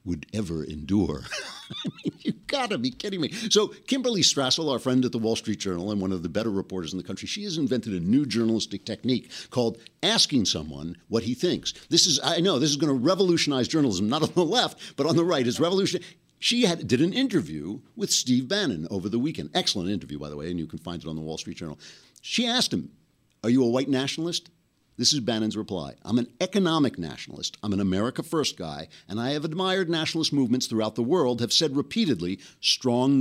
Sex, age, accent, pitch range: male, 60-79, American, 95-145 Hz